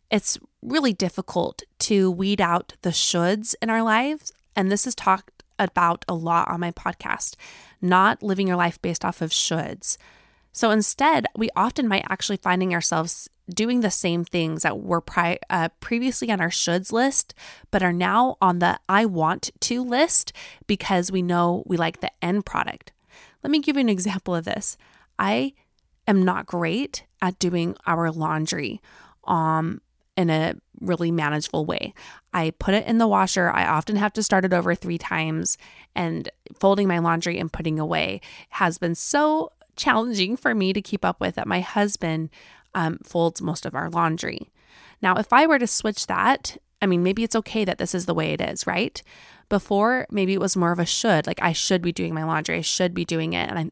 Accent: American